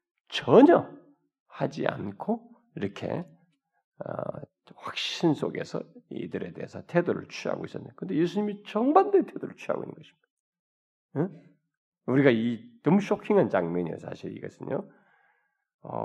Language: Korean